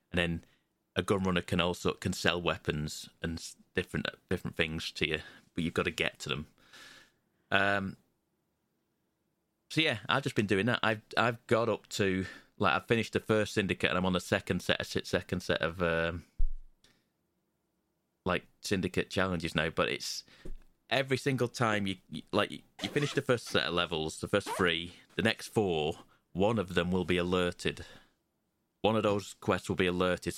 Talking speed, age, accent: 180 wpm, 30-49, British